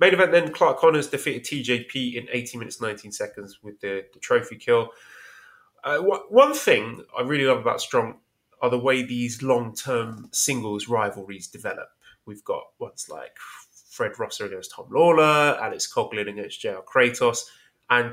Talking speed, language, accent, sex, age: 160 wpm, English, British, male, 20-39